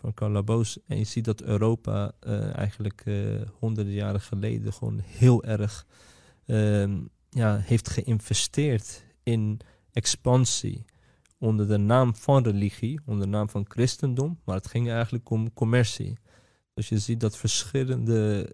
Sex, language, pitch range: male, Dutch, 105-125 Hz